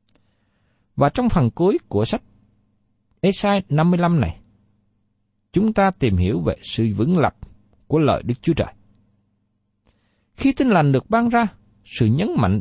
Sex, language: male, Vietnamese